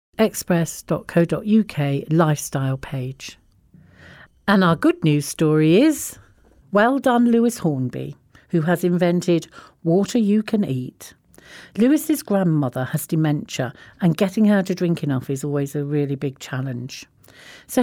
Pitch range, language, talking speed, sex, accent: 140-195 Hz, English, 125 wpm, female, British